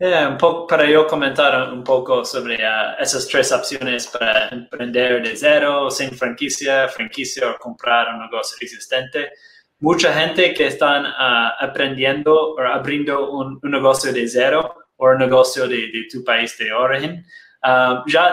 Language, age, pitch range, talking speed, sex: Spanish, 20-39, 120-150 Hz, 160 wpm, male